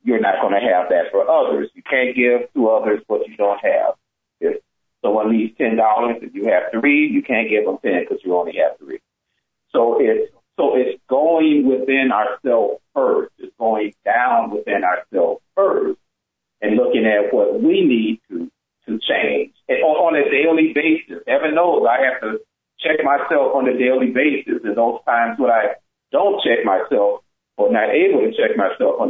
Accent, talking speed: American, 185 wpm